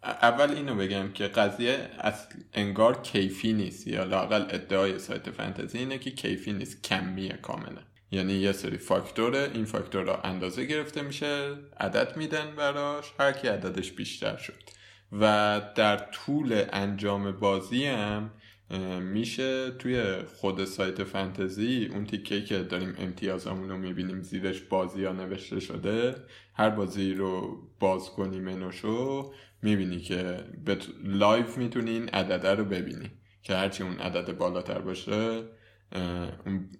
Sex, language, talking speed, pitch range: male, Persian, 130 wpm, 95-115 Hz